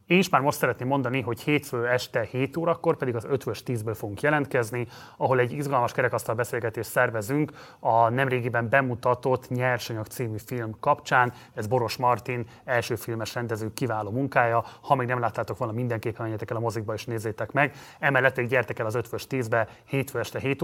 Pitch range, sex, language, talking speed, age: 115-135 Hz, male, Hungarian, 175 wpm, 30-49